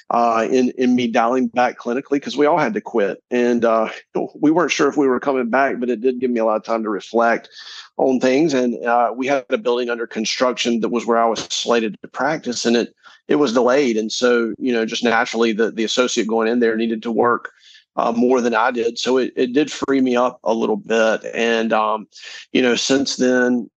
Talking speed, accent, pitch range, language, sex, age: 235 wpm, American, 115-125 Hz, English, male, 40-59